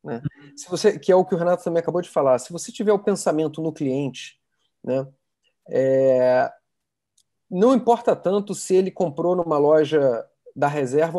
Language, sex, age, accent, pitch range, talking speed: Portuguese, male, 40-59, Brazilian, 130-175 Hz, 165 wpm